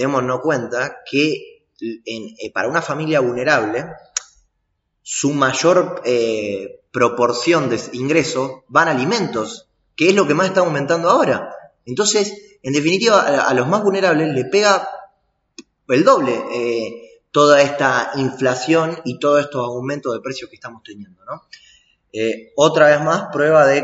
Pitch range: 120-150 Hz